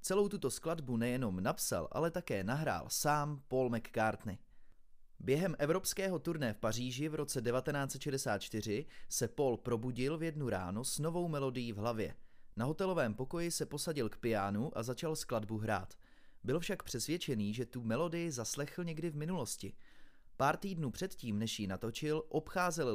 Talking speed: 150 wpm